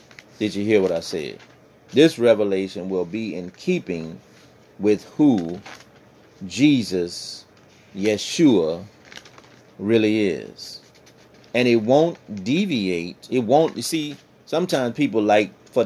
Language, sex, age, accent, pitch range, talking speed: English, male, 30-49, American, 95-120 Hz, 115 wpm